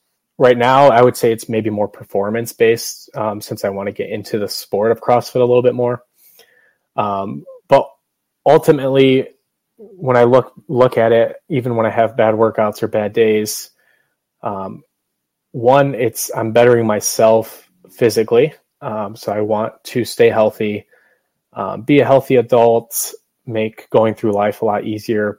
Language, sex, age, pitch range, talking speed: English, male, 20-39, 110-130 Hz, 165 wpm